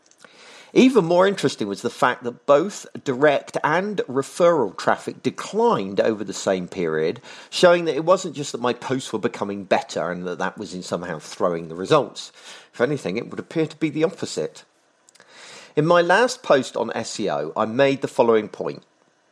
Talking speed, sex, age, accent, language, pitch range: 175 wpm, male, 40-59, British, English, 105-155 Hz